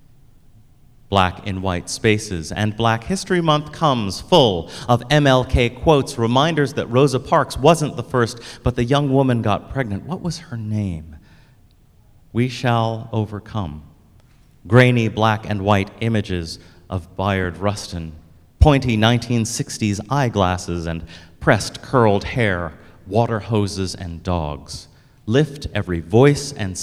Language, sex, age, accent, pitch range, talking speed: English, male, 30-49, American, 90-125 Hz, 125 wpm